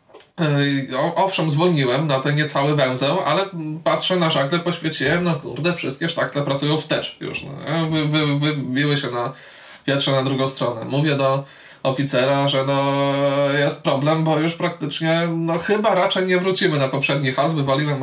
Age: 20-39